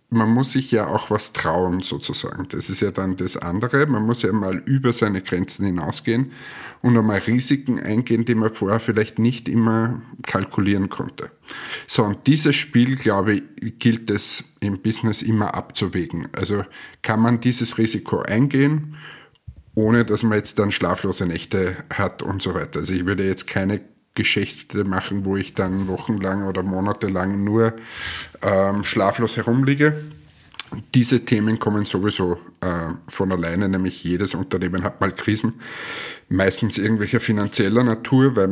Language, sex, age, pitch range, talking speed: German, male, 50-69, 95-115 Hz, 155 wpm